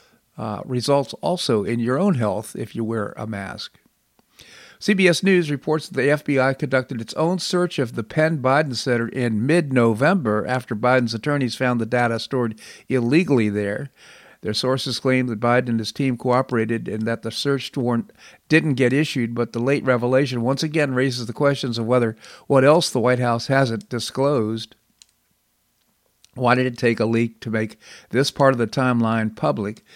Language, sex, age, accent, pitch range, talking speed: English, male, 50-69, American, 115-135 Hz, 170 wpm